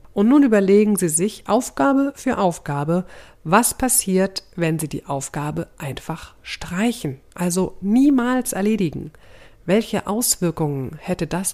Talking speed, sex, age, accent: 120 wpm, female, 50-69, German